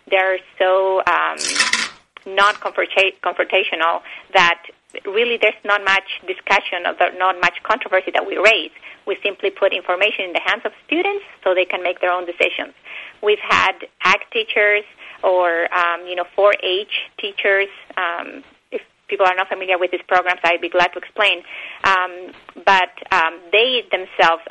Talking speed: 155 wpm